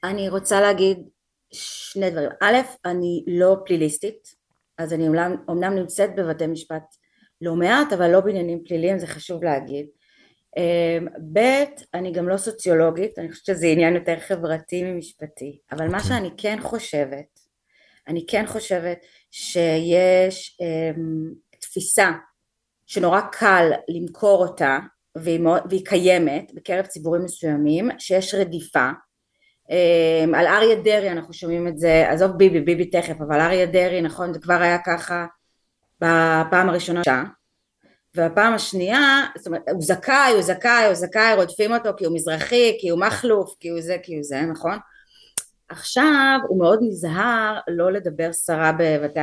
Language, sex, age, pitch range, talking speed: Hebrew, female, 30-49, 165-195 Hz, 140 wpm